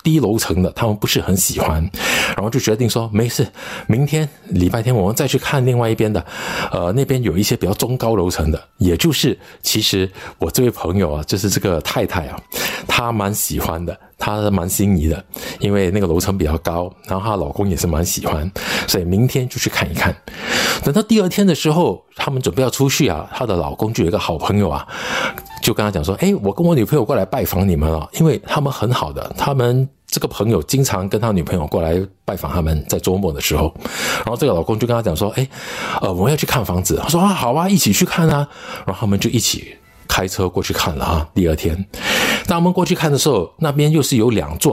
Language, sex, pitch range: Chinese, male, 95-140 Hz